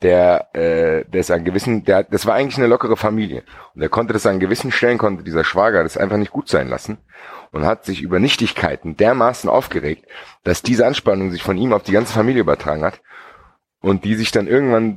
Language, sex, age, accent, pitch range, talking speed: German, male, 30-49, German, 70-105 Hz, 215 wpm